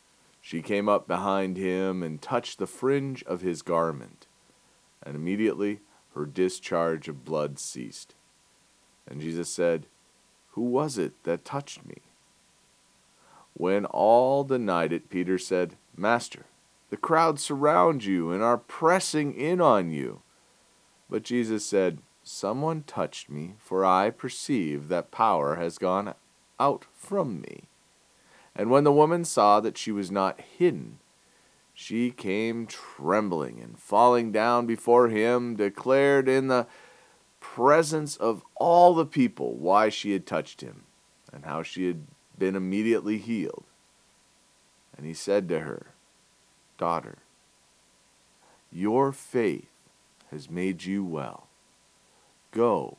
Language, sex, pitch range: English, male, 90-130 Hz